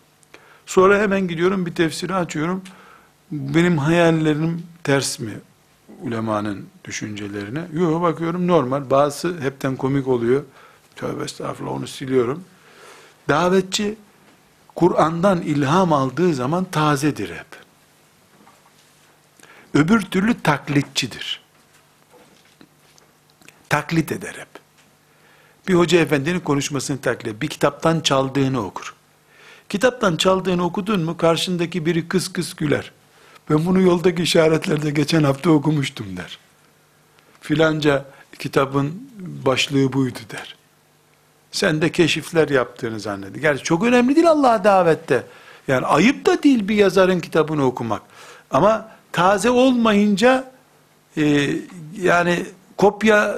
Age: 60-79